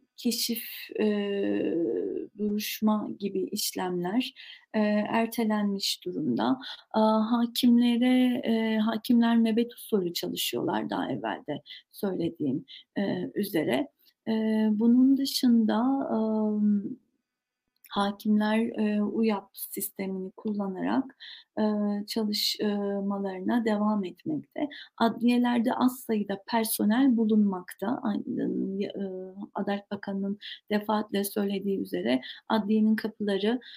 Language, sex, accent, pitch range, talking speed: Turkish, female, native, 205-255 Hz, 85 wpm